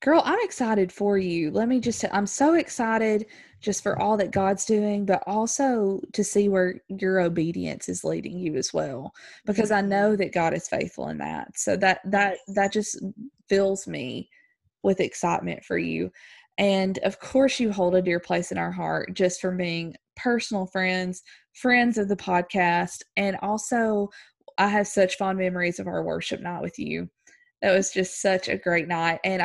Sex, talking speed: female, 185 wpm